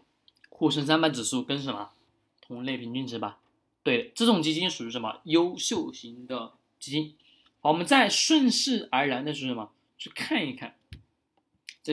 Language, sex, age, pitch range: Chinese, male, 20-39, 125-165 Hz